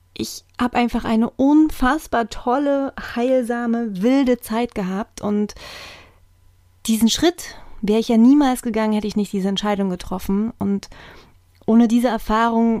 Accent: German